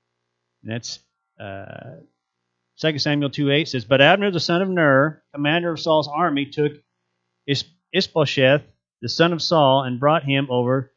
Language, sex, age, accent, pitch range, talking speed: English, male, 30-49, American, 100-140 Hz, 155 wpm